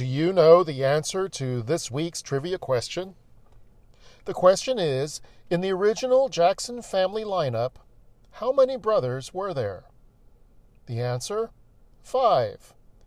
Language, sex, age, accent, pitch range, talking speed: English, male, 50-69, American, 120-185 Hz, 125 wpm